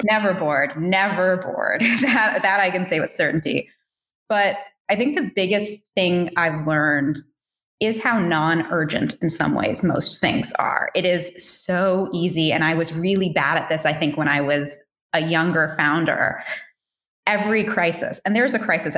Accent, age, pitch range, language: American, 20-39, 160-210 Hz, English